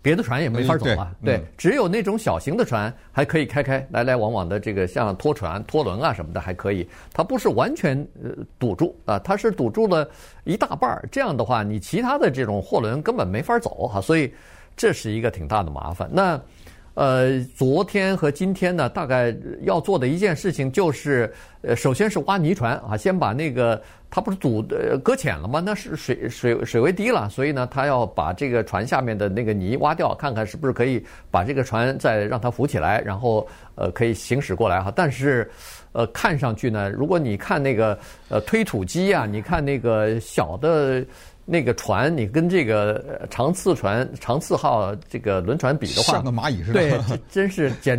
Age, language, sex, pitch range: 50-69, Chinese, male, 115-160 Hz